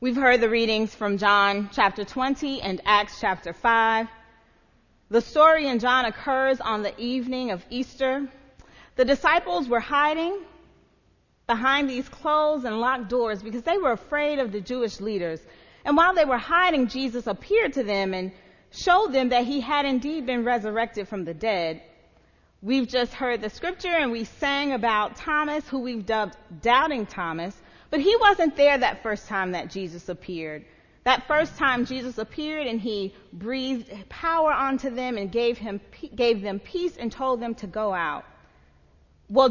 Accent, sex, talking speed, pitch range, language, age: American, female, 165 wpm, 205-270 Hz, English, 40-59